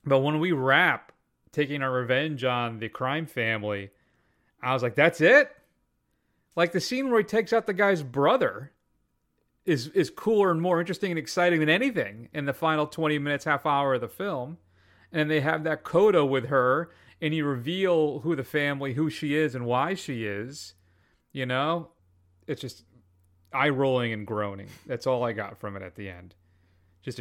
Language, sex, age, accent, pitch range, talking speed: English, male, 30-49, American, 95-150 Hz, 185 wpm